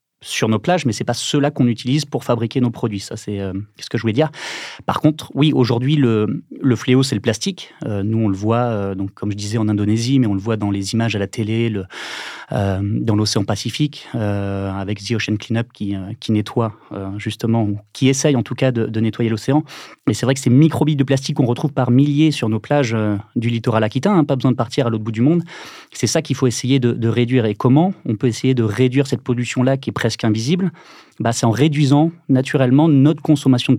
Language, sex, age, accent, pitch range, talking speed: French, male, 30-49, French, 110-135 Hz, 245 wpm